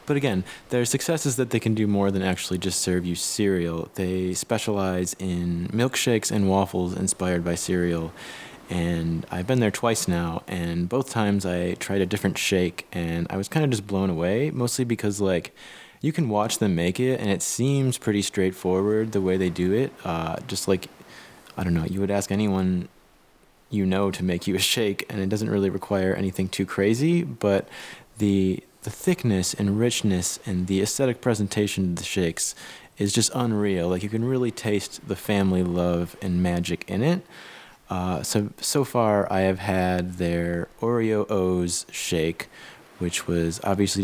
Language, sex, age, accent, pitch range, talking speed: English, male, 20-39, American, 90-105 Hz, 180 wpm